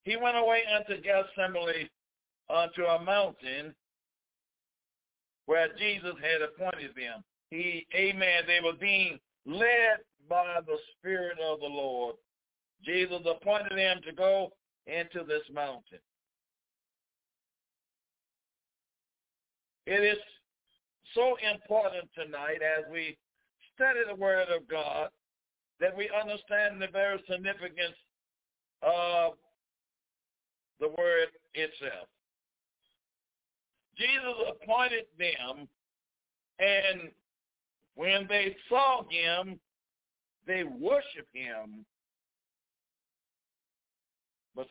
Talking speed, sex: 90 wpm, male